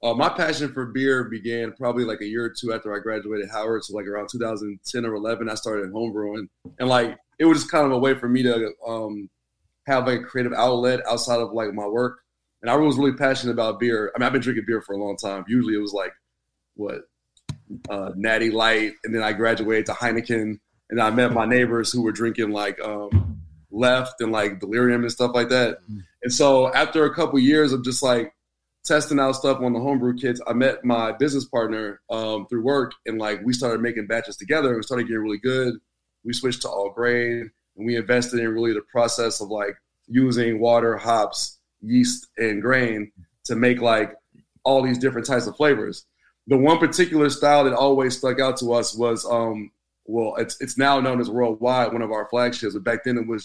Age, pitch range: 20-39, 110-125 Hz